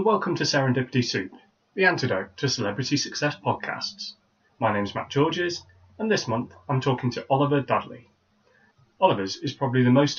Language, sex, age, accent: English, male, 30-49, British